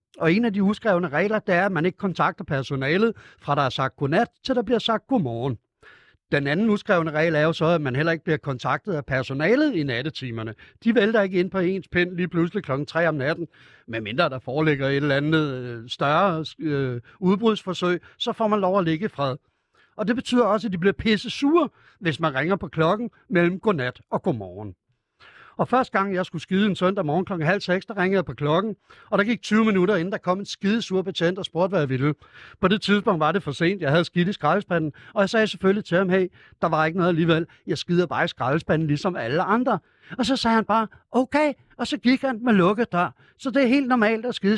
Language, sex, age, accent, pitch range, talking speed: Danish, male, 60-79, native, 150-205 Hz, 235 wpm